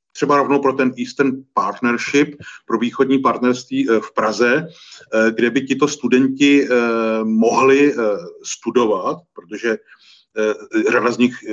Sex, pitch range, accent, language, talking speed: male, 115-135 Hz, native, Czech, 110 wpm